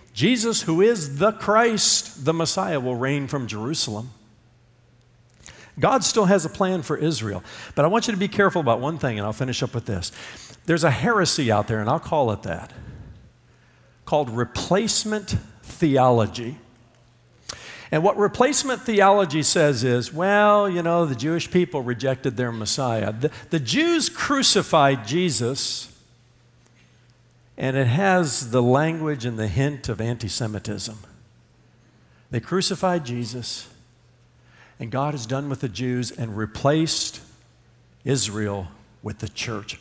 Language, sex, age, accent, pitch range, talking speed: English, male, 50-69, American, 115-160 Hz, 140 wpm